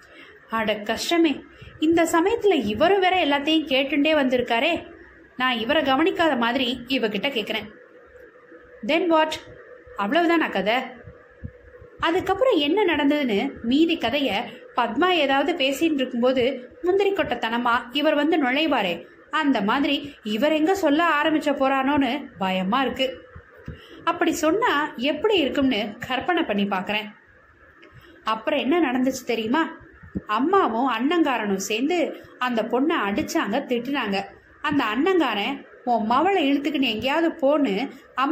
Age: 20-39